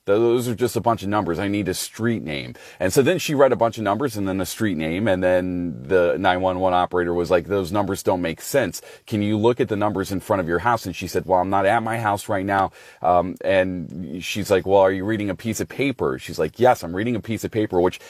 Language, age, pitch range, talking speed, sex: English, 30-49, 90-115 Hz, 270 wpm, male